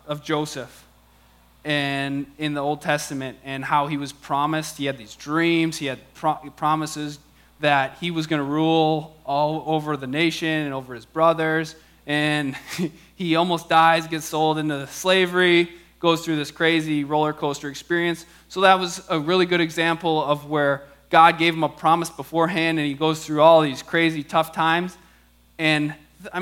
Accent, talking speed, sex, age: American, 170 wpm, male, 20-39